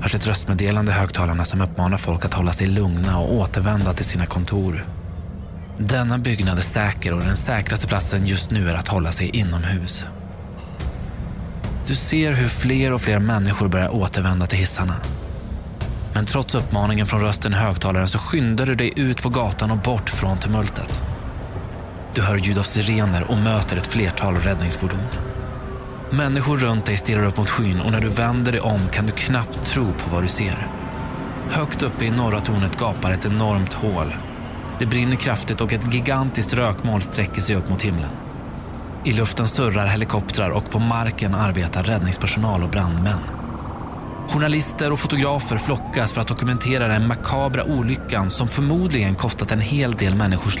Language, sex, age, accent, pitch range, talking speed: Swedish, male, 20-39, native, 95-120 Hz, 165 wpm